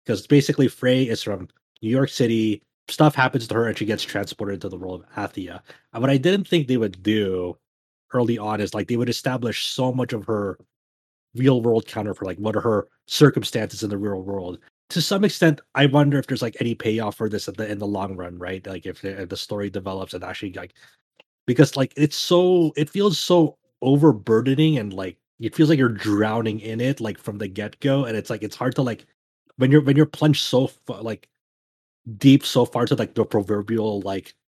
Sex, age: male, 30-49